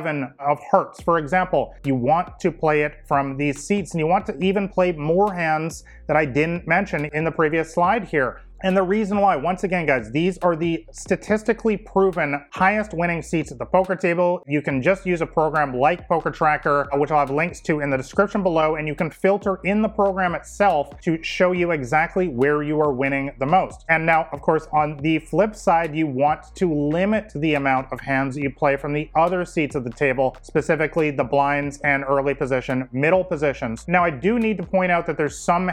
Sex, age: male, 30-49